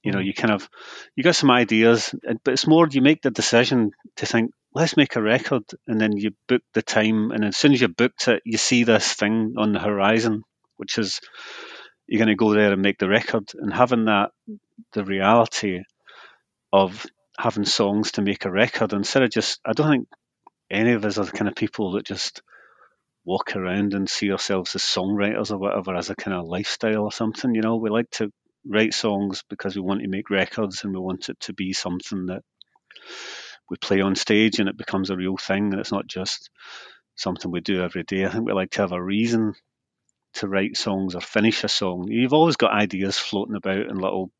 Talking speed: 215 wpm